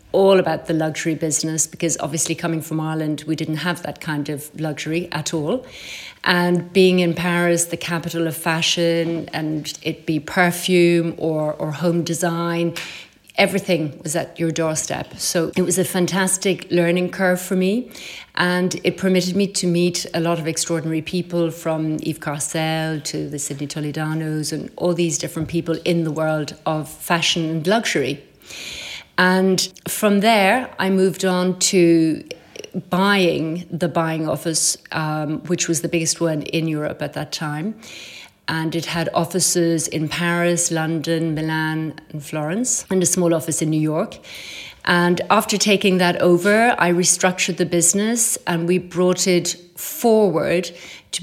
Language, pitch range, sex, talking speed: English, 160-180 Hz, female, 155 wpm